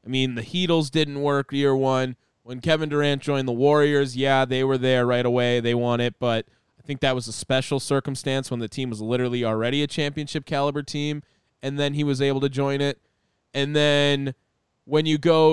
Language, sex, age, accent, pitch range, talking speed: English, male, 20-39, American, 125-150 Hz, 205 wpm